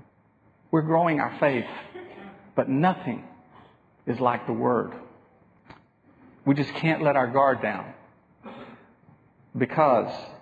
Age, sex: 50-69, male